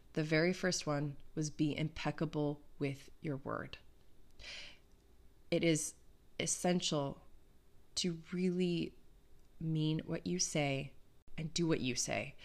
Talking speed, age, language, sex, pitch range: 115 wpm, 20-39, English, female, 155-180 Hz